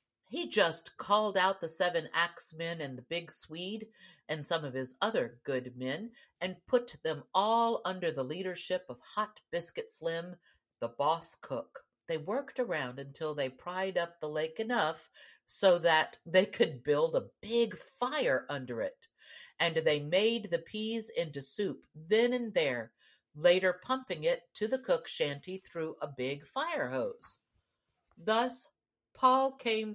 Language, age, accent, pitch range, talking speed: English, 50-69, American, 155-230 Hz, 155 wpm